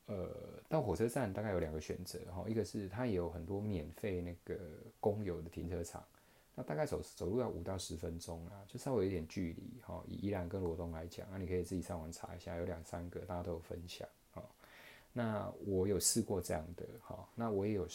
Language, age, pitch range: Chinese, 20-39, 85-105 Hz